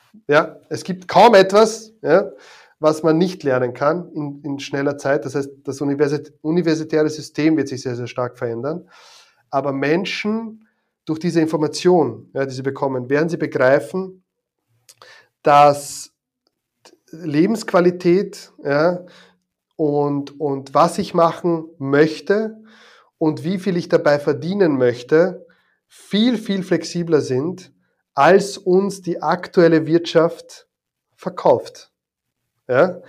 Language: German